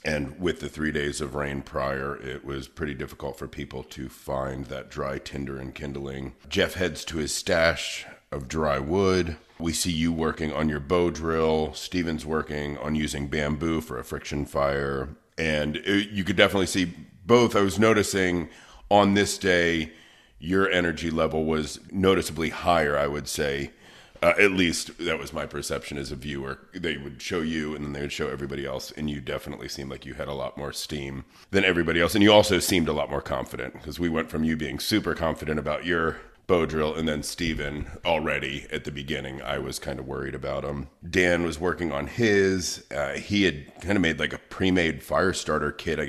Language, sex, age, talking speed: English, male, 40-59, 200 wpm